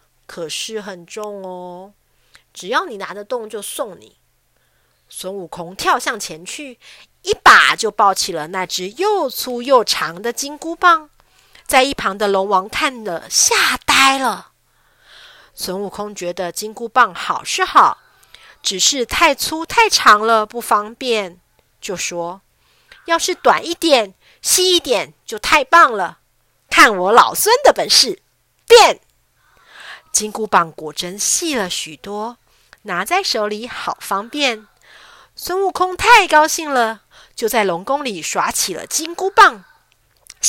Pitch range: 200-325 Hz